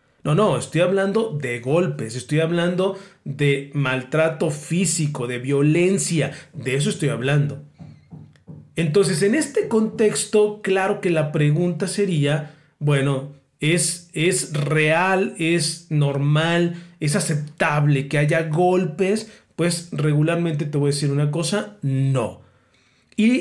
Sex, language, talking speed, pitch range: male, Spanish, 120 wpm, 145-180 Hz